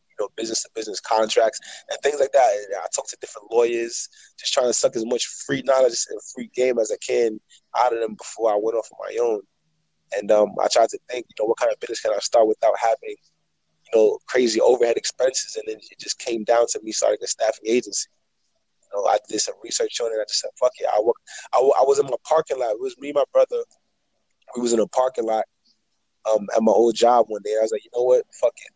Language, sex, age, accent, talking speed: English, male, 20-39, American, 260 wpm